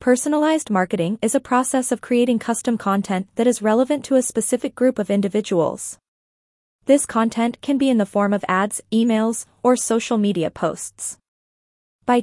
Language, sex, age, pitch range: English, female, 20-39, 200-250 Hz